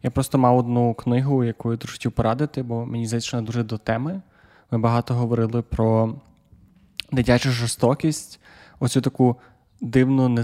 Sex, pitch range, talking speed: male, 120-130 Hz, 150 wpm